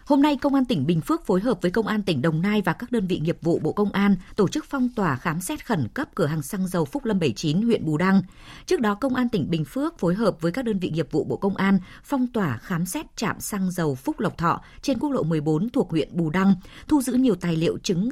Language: Vietnamese